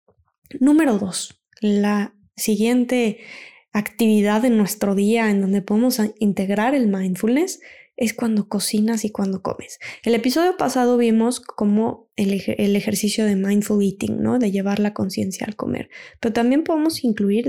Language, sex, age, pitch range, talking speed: Spanish, female, 10-29, 205-245 Hz, 150 wpm